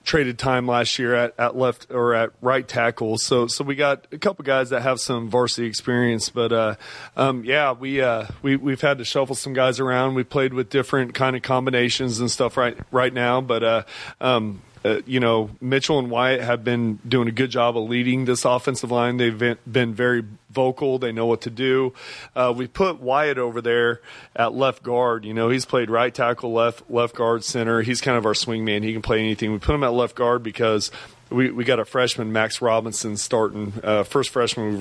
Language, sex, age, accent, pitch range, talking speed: English, male, 30-49, American, 110-125 Hz, 215 wpm